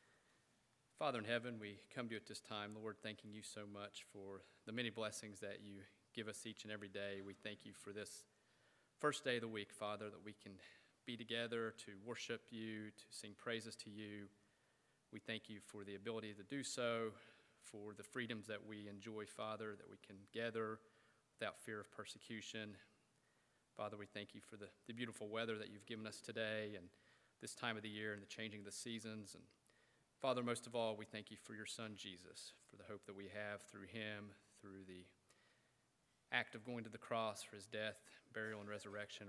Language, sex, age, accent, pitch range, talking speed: English, male, 30-49, American, 105-115 Hz, 205 wpm